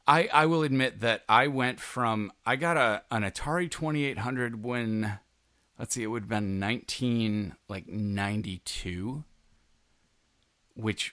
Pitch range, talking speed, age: 95-115 Hz, 130 wpm, 30-49